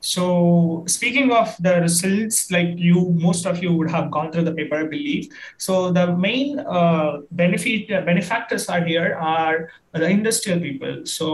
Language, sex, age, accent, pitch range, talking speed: English, male, 20-39, Indian, 160-185 Hz, 170 wpm